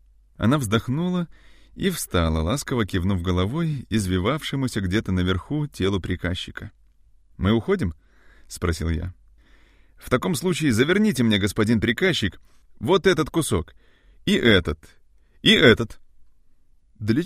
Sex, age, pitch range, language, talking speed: male, 30-49, 90-140 Hz, Russian, 110 wpm